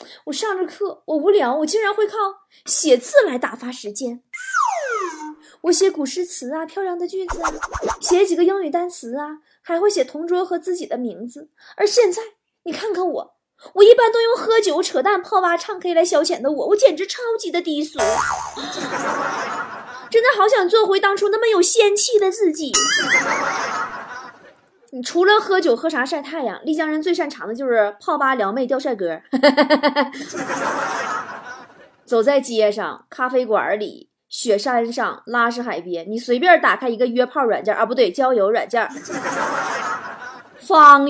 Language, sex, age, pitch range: Chinese, female, 20-39, 250-385 Hz